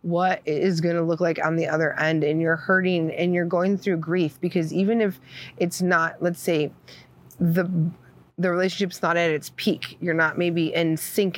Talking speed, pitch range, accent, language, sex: 195 wpm, 165-190 Hz, American, English, female